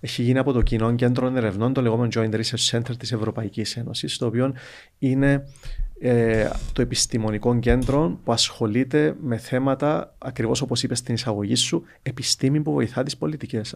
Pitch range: 115-140 Hz